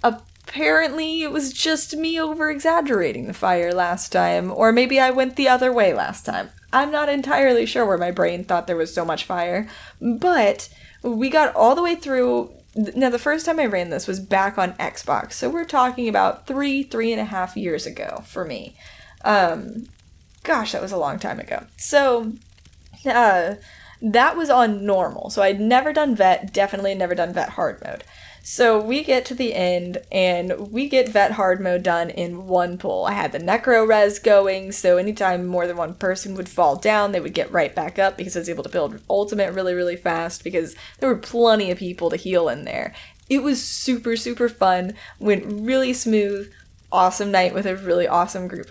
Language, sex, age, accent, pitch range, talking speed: English, female, 10-29, American, 180-255 Hz, 195 wpm